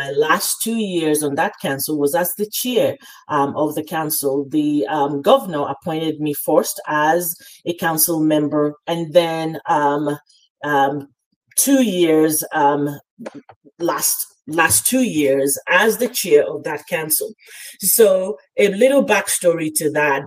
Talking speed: 140 wpm